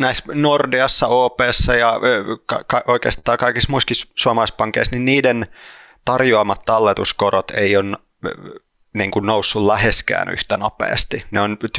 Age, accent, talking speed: 30-49, native, 125 wpm